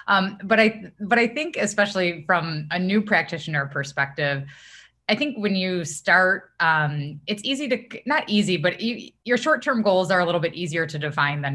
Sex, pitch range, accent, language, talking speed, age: female, 135-170 Hz, American, English, 185 wpm, 20-39